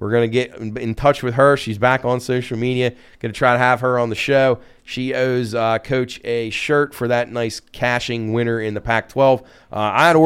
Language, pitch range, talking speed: English, 115-140 Hz, 220 wpm